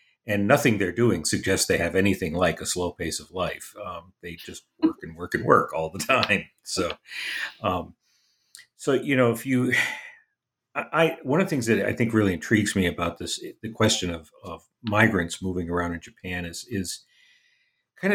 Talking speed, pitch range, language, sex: 190 wpm, 95-115 Hz, English, male